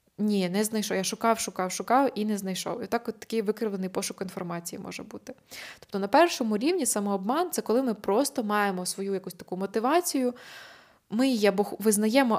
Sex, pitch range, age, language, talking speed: female, 185-230 Hz, 20-39, Ukrainian, 185 wpm